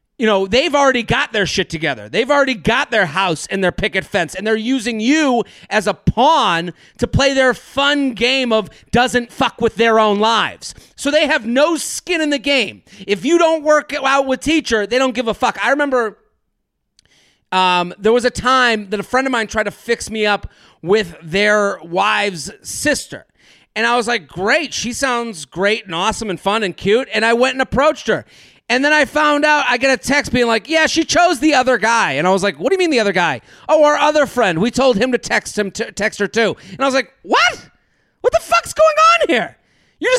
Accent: American